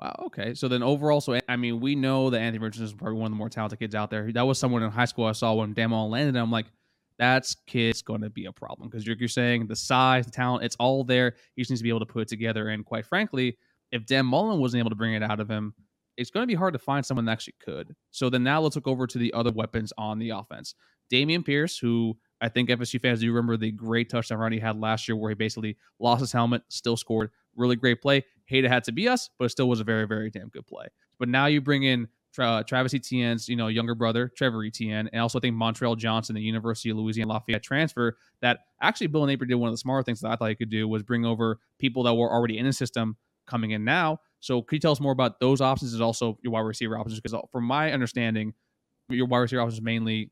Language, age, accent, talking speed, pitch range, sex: English, 20-39, American, 275 wpm, 110-125 Hz, male